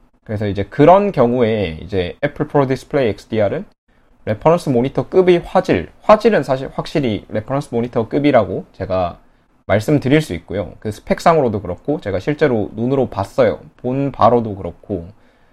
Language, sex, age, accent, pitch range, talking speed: English, male, 20-39, Korean, 100-140 Hz, 120 wpm